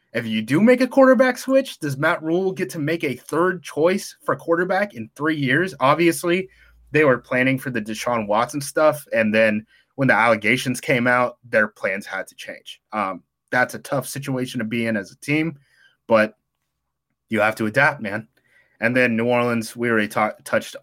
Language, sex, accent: English, male, American